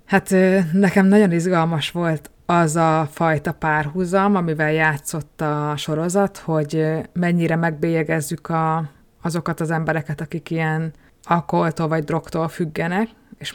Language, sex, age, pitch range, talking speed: Hungarian, female, 20-39, 150-165 Hz, 115 wpm